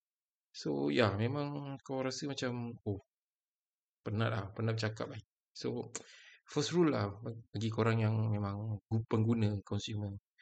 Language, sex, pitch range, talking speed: Malay, male, 110-140 Hz, 140 wpm